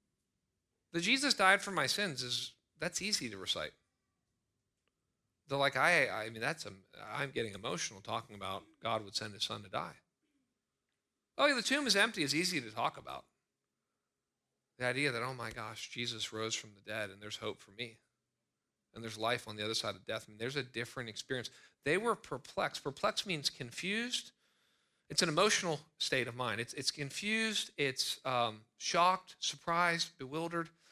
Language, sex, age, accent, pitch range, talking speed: English, male, 40-59, American, 115-170 Hz, 180 wpm